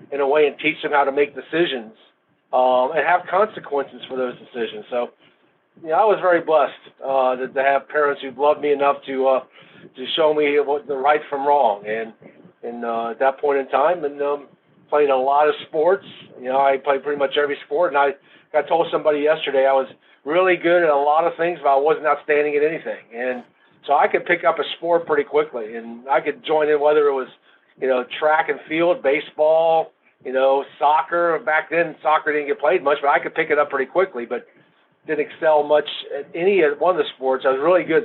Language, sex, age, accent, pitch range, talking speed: English, male, 40-59, American, 130-150 Hz, 225 wpm